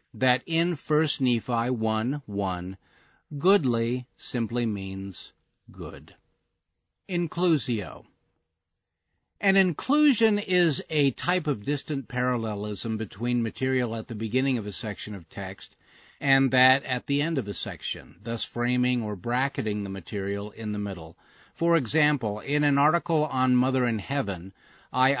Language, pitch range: English, 105-130 Hz